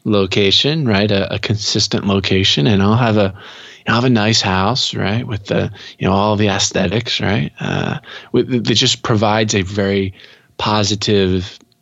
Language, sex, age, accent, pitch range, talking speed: English, male, 20-39, American, 95-115 Hz, 170 wpm